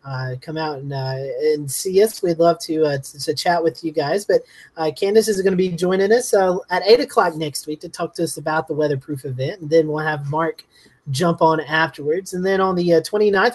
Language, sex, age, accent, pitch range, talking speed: English, male, 30-49, American, 150-195 Hz, 245 wpm